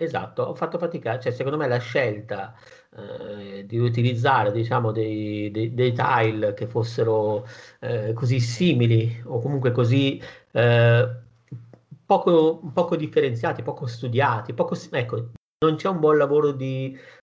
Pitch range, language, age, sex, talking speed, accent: 115-135 Hz, Italian, 50-69, male, 135 wpm, native